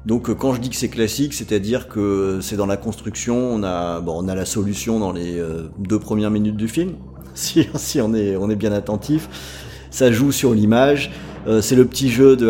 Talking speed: 220 wpm